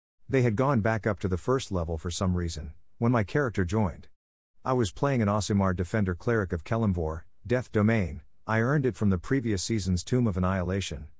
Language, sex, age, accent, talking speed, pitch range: English, male, 50-69, American, 200 wpm, 90-115 Hz